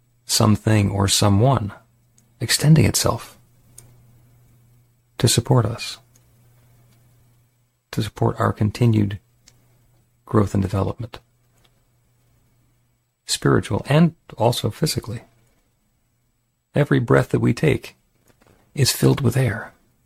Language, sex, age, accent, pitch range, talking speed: English, male, 40-59, American, 105-120 Hz, 85 wpm